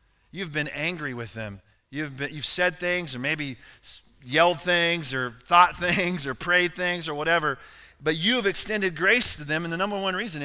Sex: male